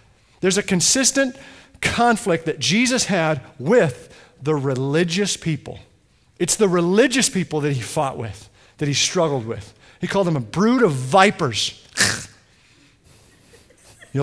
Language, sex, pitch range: English, male, 145-225 Hz